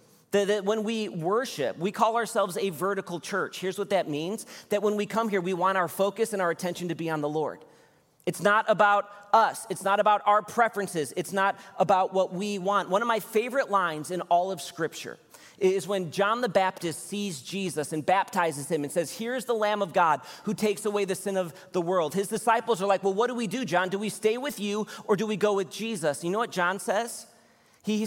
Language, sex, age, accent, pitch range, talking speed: English, male, 30-49, American, 140-200 Hz, 230 wpm